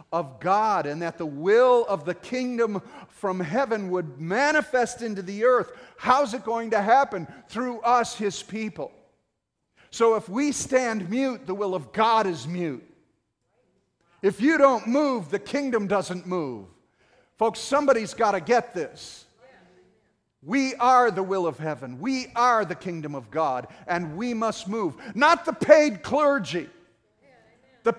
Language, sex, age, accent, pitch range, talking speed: English, male, 50-69, American, 180-240 Hz, 150 wpm